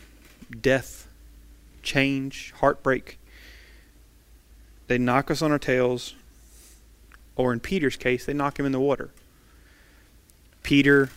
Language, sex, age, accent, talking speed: English, male, 30-49, American, 105 wpm